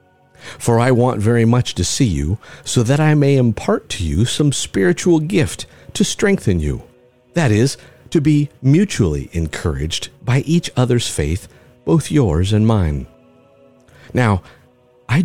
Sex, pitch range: male, 85-135 Hz